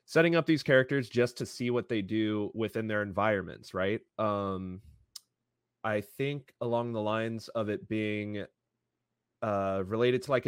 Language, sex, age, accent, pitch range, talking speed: English, male, 20-39, American, 95-115 Hz, 155 wpm